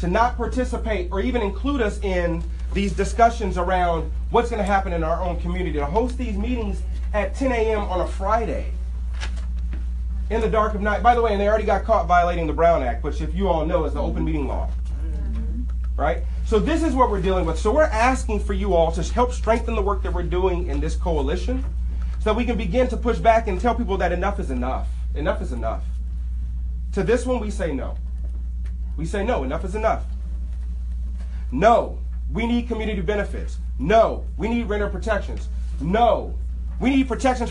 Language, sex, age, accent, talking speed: English, male, 30-49, American, 200 wpm